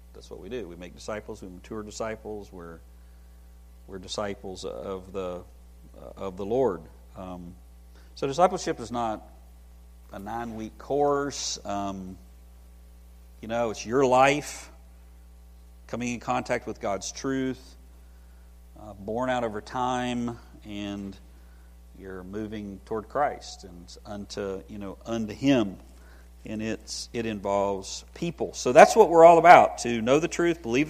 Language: English